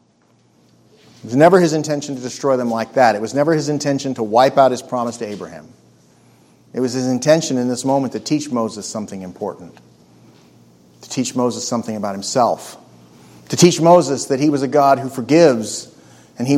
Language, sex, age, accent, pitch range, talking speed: English, male, 40-59, American, 120-155 Hz, 190 wpm